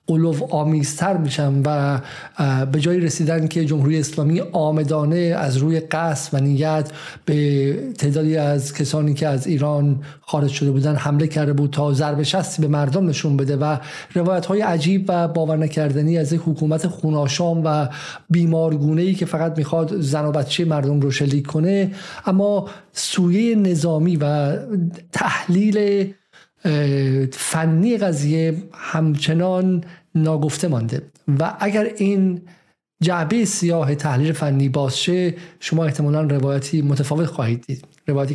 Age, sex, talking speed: 50-69, male, 125 wpm